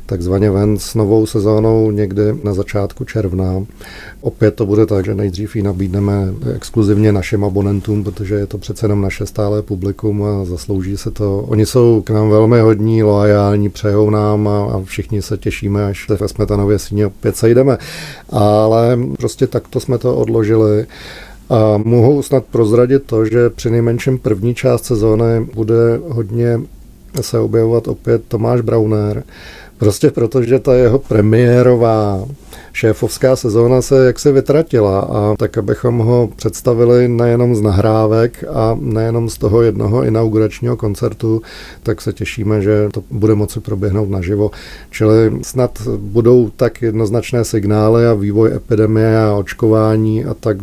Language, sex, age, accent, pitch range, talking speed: Czech, male, 40-59, native, 105-115 Hz, 150 wpm